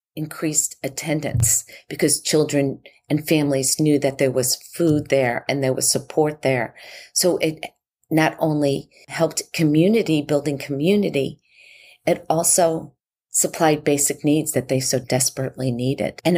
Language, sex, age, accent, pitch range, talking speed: English, female, 40-59, American, 130-150 Hz, 130 wpm